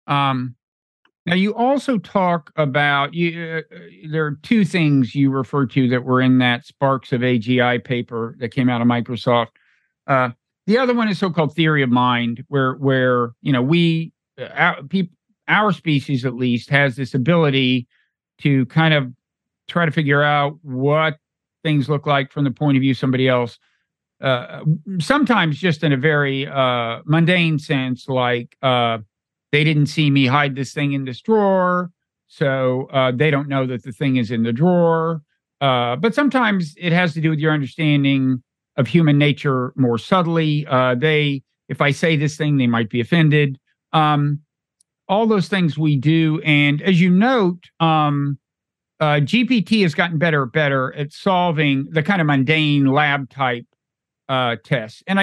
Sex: male